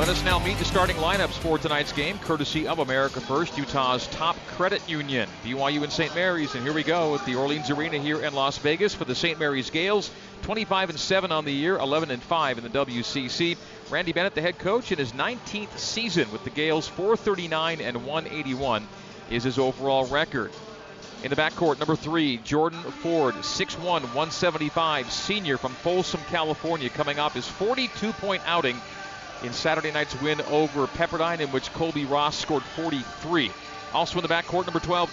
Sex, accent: male, American